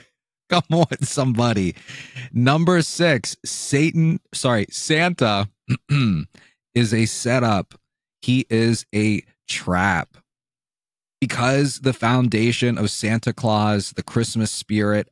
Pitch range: 105-130 Hz